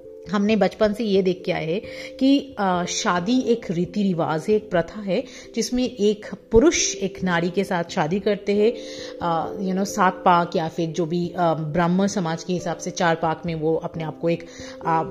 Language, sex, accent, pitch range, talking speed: Hindi, female, native, 180-260 Hz, 190 wpm